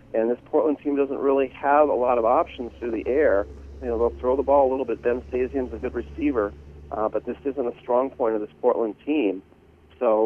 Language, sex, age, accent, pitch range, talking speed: English, male, 40-59, American, 110-130 Hz, 235 wpm